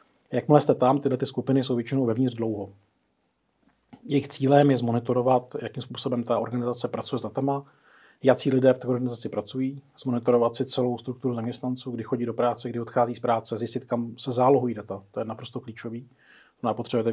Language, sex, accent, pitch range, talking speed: Czech, male, native, 115-130 Hz, 175 wpm